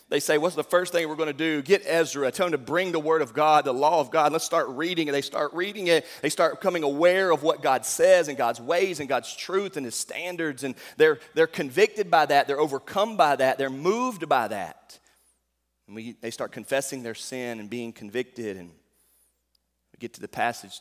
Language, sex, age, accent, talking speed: English, male, 30-49, American, 230 wpm